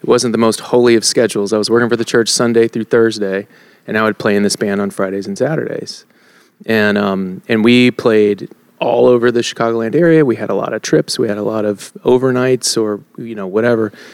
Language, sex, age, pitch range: English, male, 30-49, 110-130 Hz